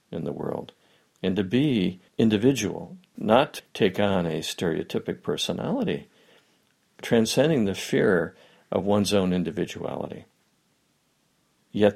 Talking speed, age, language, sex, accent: 105 wpm, 50-69, English, male, American